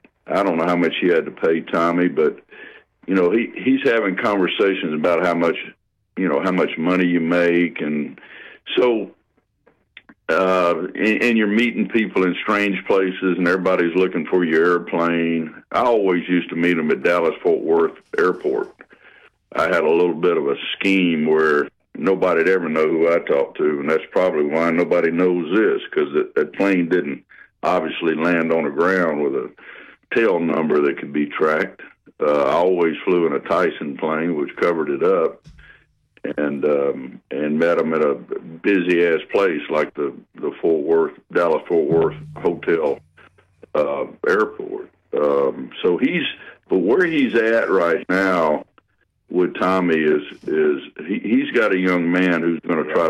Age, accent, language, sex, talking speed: 60-79, American, English, male, 170 wpm